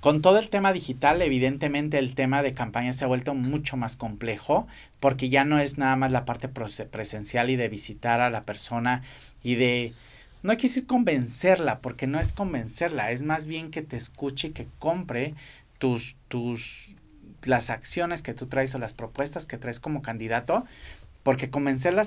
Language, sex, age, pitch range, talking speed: Spanish, male, 40-59, 120-150 Hz, 180 wpm